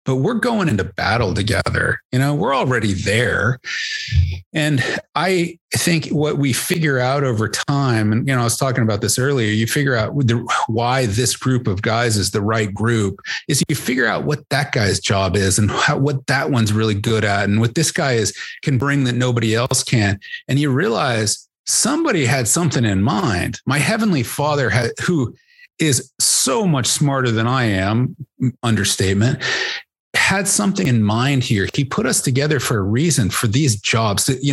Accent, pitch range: American, 110-145 Hz